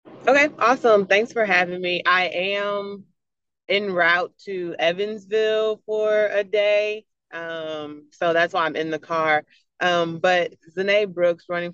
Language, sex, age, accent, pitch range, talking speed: English, female, 30-49, American, 145-175 Hz, 145 wpm